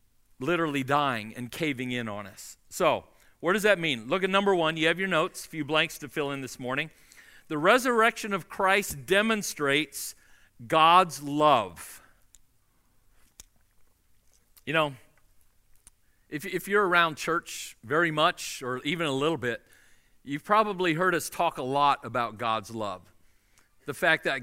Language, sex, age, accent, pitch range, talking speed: English, male, 50-69, American, 110-185 Hz, 150 wpm